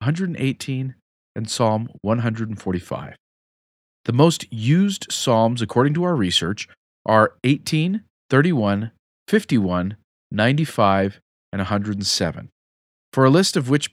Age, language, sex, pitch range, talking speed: 40-59, English, male, 100-145 Hz, 105 wpm